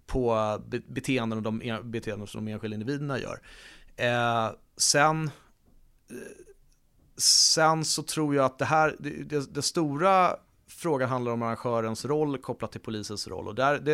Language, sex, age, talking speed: Swedish, male, 30-49, 140 wpm